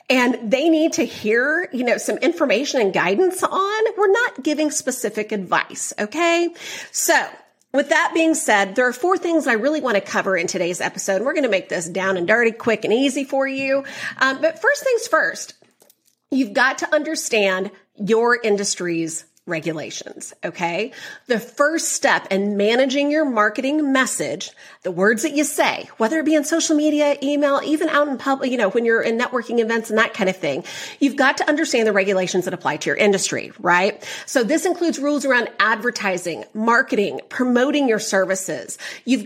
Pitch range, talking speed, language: 205-295 Hz, 185 wpm, English